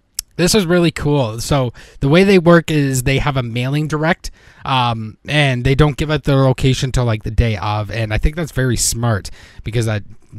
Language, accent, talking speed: English, American, 210 wpm